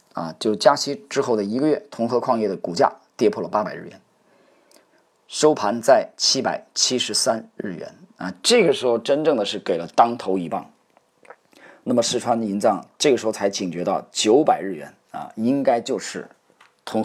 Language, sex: Chinese, male